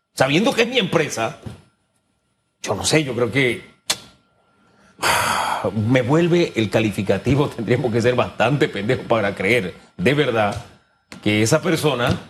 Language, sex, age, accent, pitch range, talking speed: Spanish, male, 40-59, Mexican, 125-170 Hz, 130 wpm